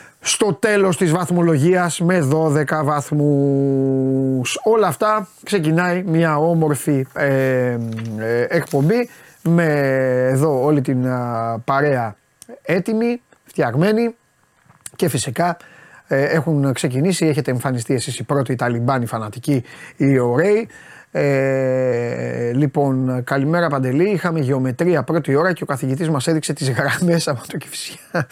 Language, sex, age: Greek, male, 30-49